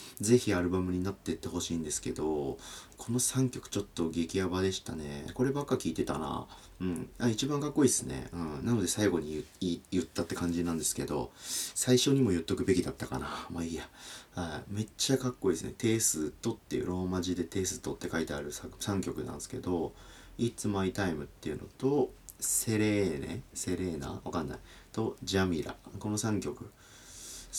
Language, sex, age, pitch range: Japanese, male, 40-59, 85-120 Hz